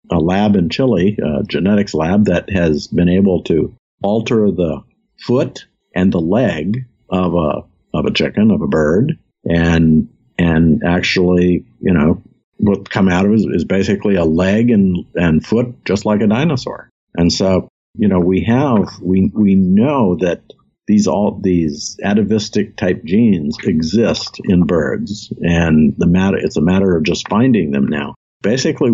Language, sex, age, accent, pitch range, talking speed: English, male, 50-69, American, 90-105 Hz, 165 wpm